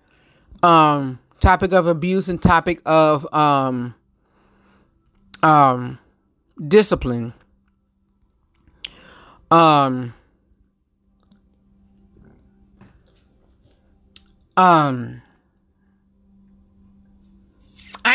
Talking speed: 35 wpm